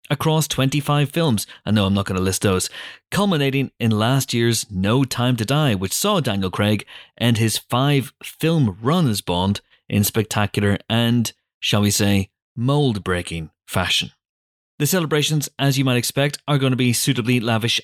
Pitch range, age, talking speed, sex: 105-140 Hz, 30-49, 170 wpm, male